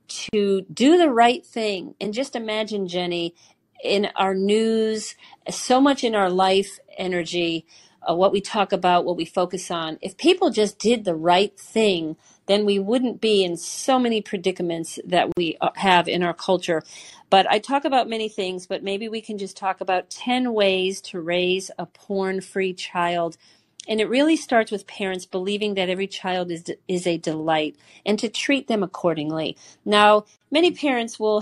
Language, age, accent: English, 40-59, American